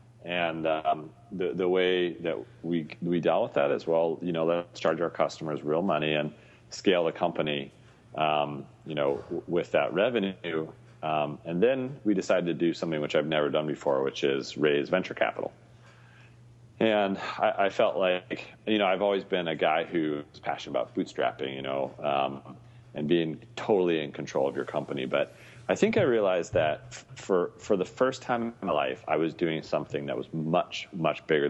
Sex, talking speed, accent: male, 190 wpm, American